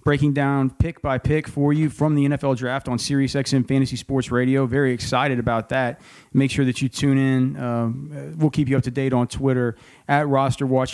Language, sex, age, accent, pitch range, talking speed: English, male, 40-59, American, 130-150 Hz, 195 wpm